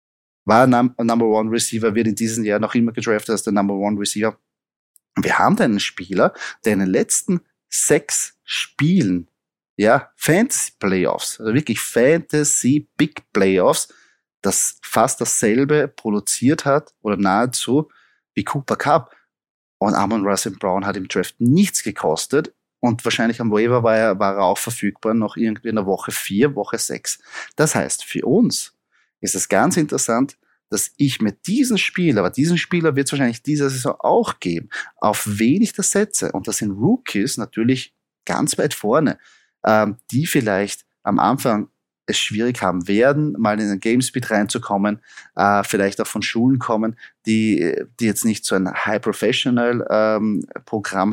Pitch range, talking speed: 105-135 Hz, 155 wpm